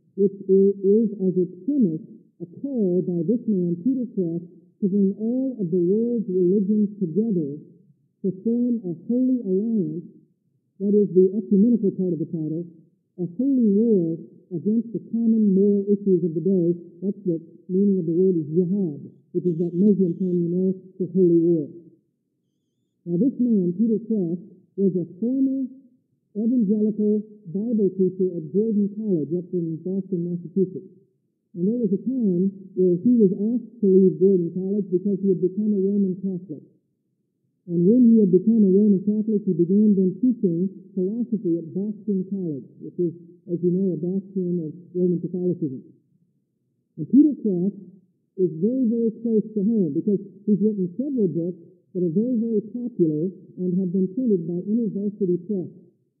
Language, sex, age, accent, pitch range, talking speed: English, male, 60-79, American, 175-210 Hz, 160 wpm